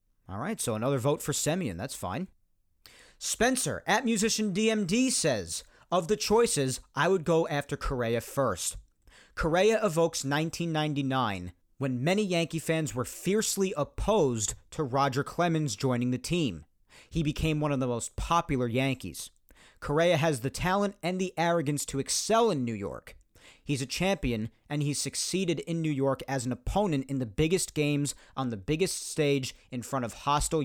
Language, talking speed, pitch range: English, 165 wpm, 120-170 Hz